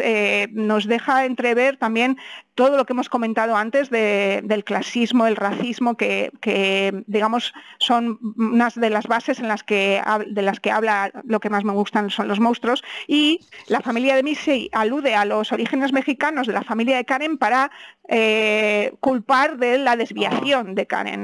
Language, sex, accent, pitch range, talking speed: Spanish, female, Spanish, 220-270 Hz, 175 wpm